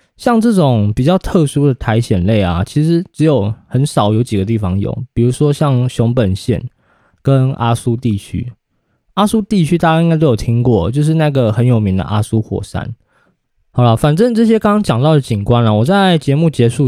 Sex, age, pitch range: male, 20-39, 115-155 Hz